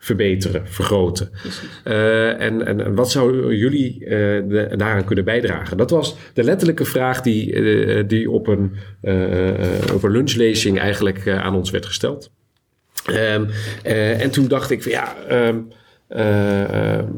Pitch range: 100-120 Hz